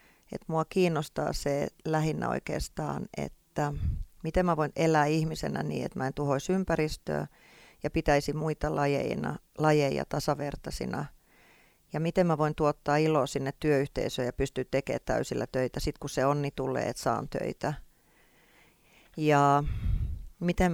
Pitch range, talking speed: 140-155 Hz, 140 wpm